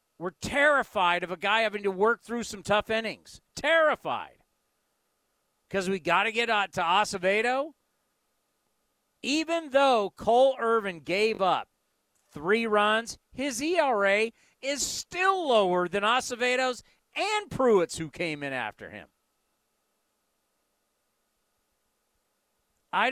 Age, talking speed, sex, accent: 40-59, 115 wpm, male, American